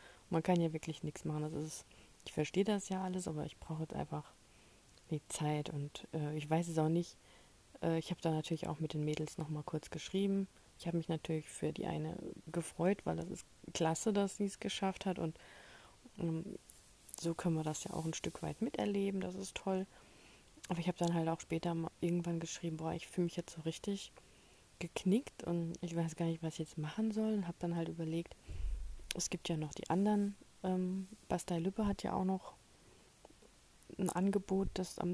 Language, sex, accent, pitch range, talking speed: German, female, German, 165-190 Hz, 205 wpm